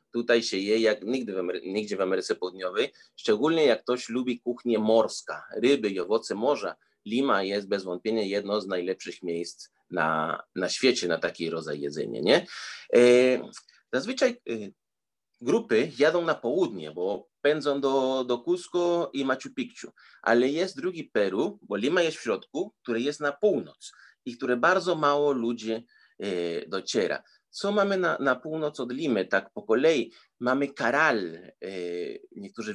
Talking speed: 155 wpm